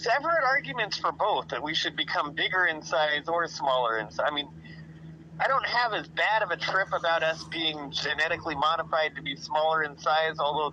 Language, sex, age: English, male, 30-49